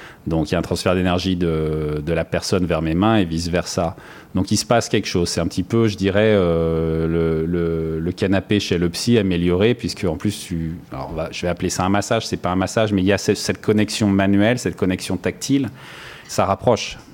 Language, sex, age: French, male, 30-49